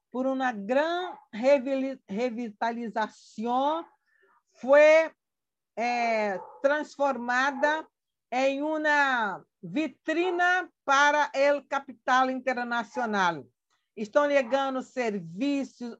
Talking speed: 65 wpm